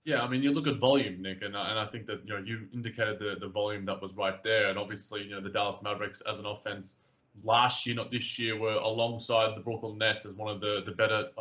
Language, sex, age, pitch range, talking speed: English, male, 20-39, 105-125 Hz, 270 wpm